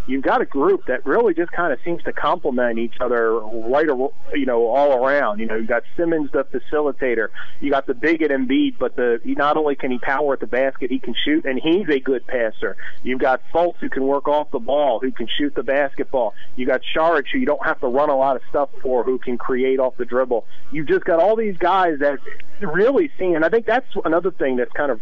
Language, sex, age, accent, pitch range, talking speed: English, male, 40-59, American, 120-150 Hz, 245 wpm